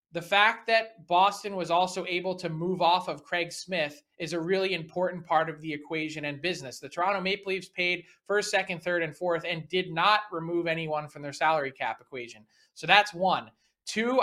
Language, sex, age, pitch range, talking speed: English, male, 20-39, 160-195 Hz, 200 wpm